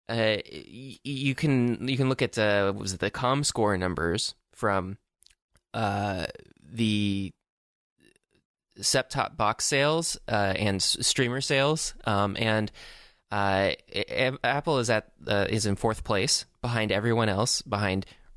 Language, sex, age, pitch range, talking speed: English, male, 20-39, 95-120 Hz, 135 wpm